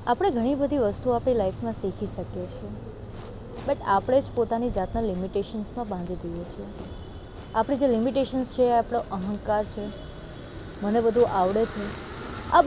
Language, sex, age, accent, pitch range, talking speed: Gujarati, female, 20-39, native, 200-255 Hz, 140 wpm